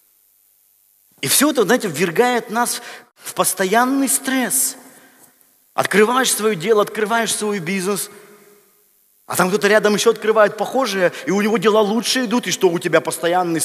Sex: male